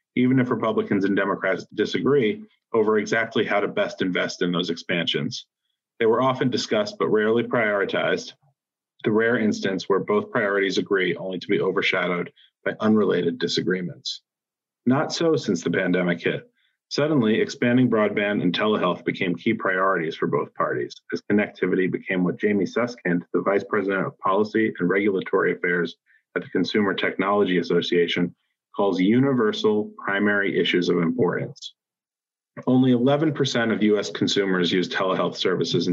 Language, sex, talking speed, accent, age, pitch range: English, male, 145 wpm, American, 40-59, 90-125 Hz